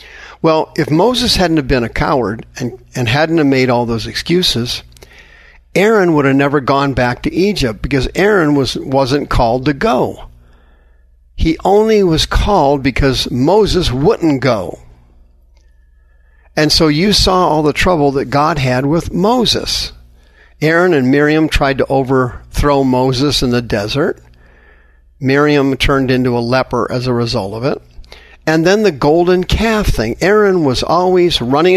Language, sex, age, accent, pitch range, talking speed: English, male, 50-69, American, 120-155 Hz, 150 wpm